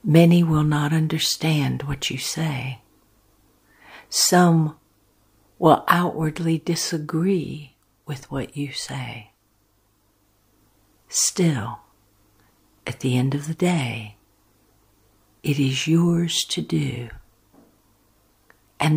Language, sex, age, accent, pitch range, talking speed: English, female, 60-79, American, 105-155 Hz, 90 wpm